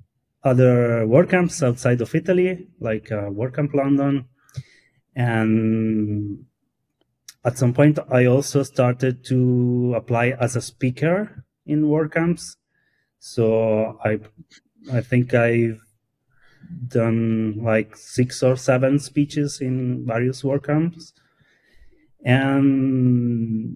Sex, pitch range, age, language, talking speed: male, 115-150 Hz, 30-49, English, 105 wpm